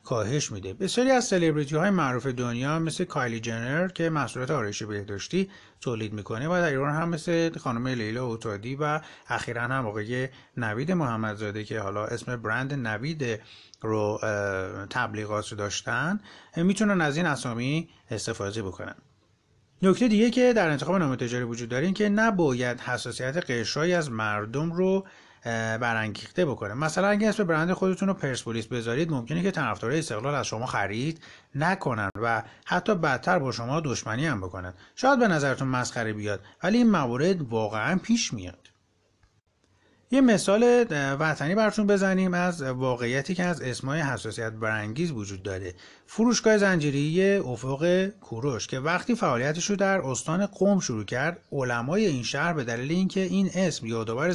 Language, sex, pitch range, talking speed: Persian, male, 115-180 Hz, 150 wpm